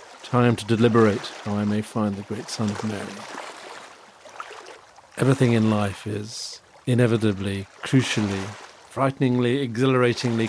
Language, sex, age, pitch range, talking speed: English, male, 50-69, 105-125 Hz, 115 wpm